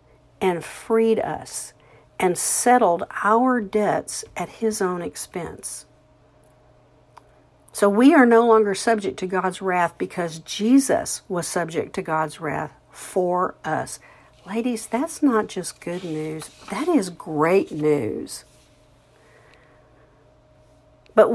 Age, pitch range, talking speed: 50-69, 190-270 Hz, 110 wpm